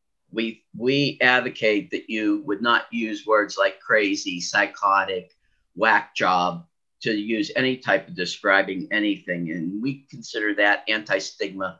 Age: 50-69